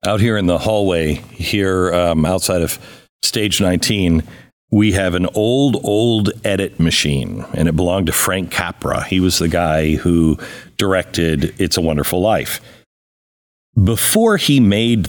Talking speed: 145 wpm